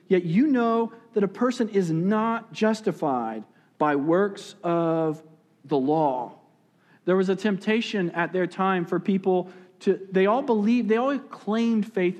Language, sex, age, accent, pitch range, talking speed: English, male, 40-59, American, 160-215 Hz, 150 wpm